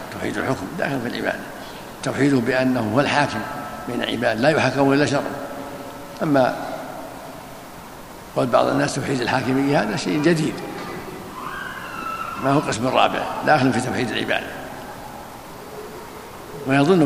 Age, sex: 60-79, male